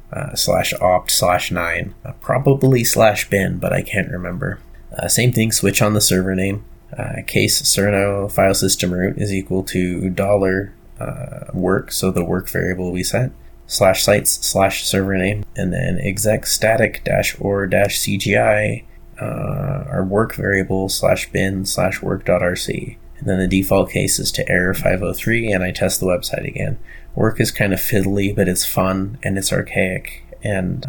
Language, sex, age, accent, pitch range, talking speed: English, male, 20-39, American, 95-105 Hz, 165 wpm